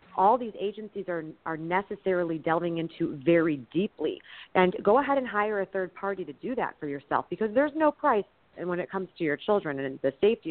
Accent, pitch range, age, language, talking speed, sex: American, 165-220 Hz, 40-59, English, 205 wpm, female